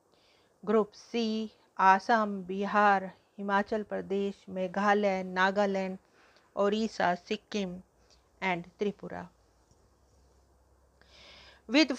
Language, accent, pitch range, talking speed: English, Indian, 185-210 Hz, 65 wpm